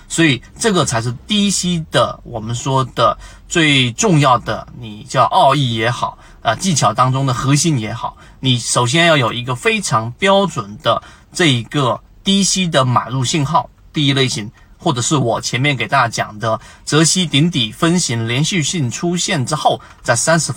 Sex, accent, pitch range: male, native, 120-170 Hz